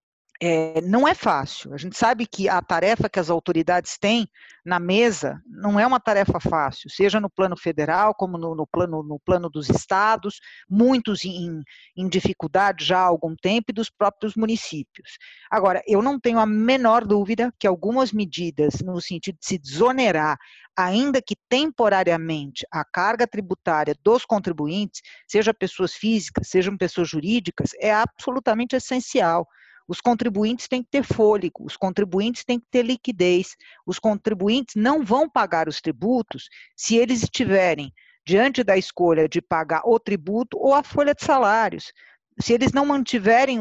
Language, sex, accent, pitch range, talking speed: Portuguese, female, Brazilian, 180-230 Hz, 155 wpm